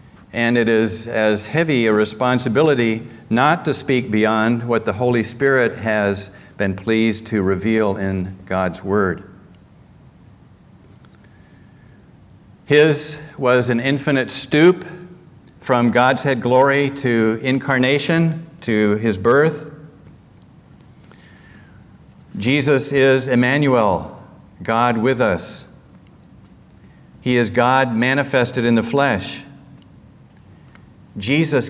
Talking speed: 95 wpm